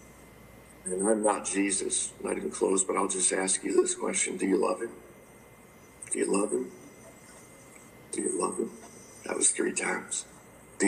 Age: 50-69